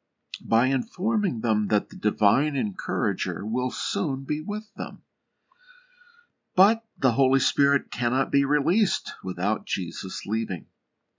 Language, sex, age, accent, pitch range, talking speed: English, male, 50-69, American, 110-165 Hz, 120 wpm